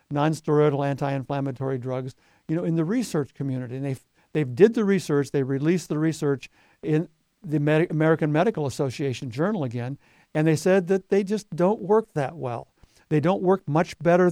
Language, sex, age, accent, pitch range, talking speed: English, male, 60-79, American, 140-185 Hz, 180 wpm